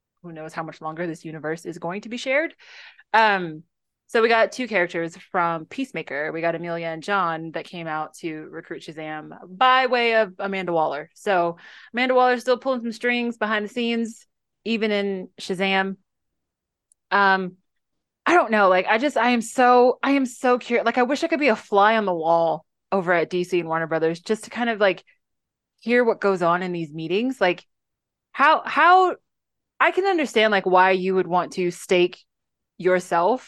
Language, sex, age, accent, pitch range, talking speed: English, female, 20-39, American, 170-225 Hz, 190 wpm